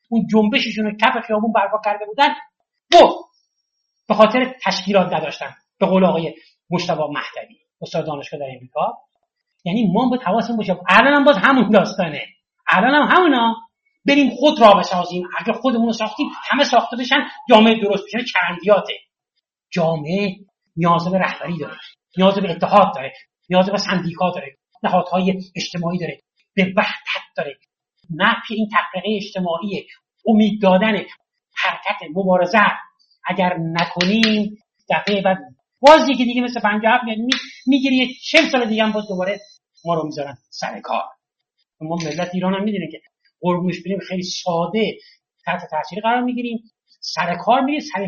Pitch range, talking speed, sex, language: 185-235 Hz, 140 wpm, male, Persian